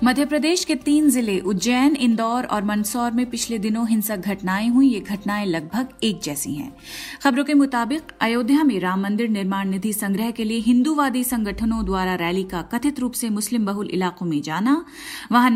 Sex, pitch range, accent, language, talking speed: female, 205-255 Hz, native, Hindi, 180 wpm